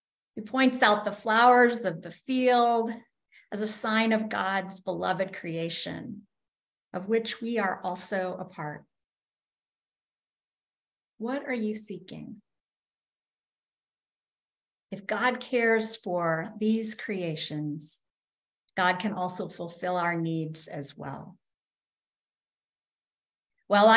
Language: English